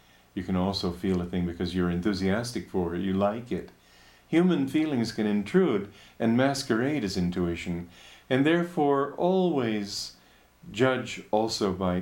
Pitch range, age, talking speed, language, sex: 90-120 Hz, 50-69, 140 wpm, English, male